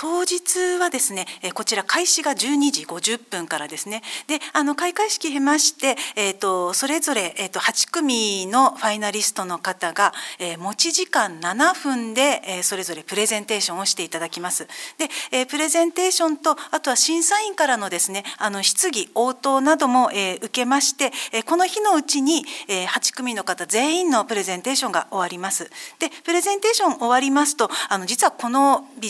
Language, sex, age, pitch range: Japanese, female, 40-59, 195-320 Hz